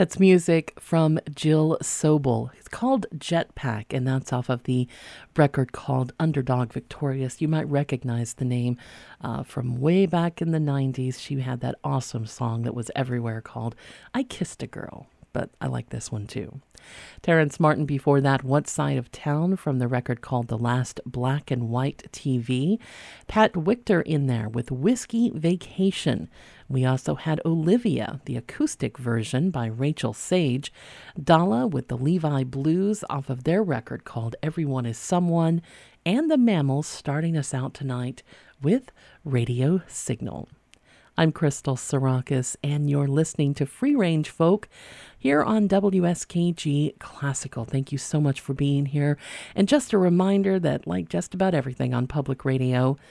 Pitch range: 130-175 Hz